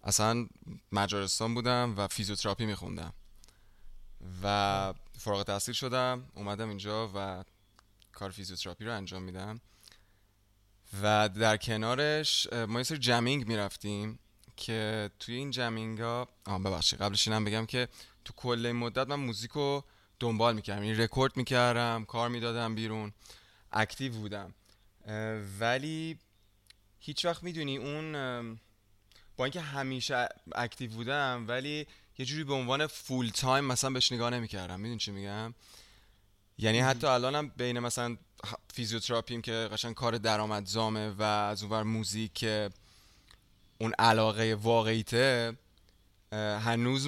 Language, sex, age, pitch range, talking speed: Persian, male, 20-39, 100-125 Hz, 120 wpm